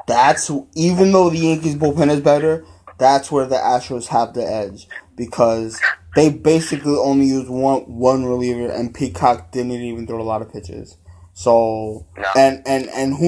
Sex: male